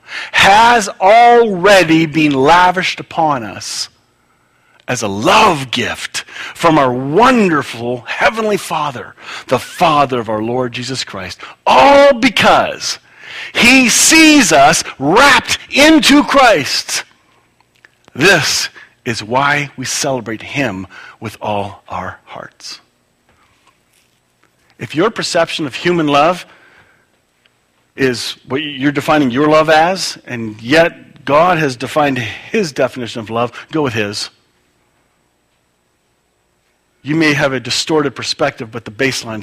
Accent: American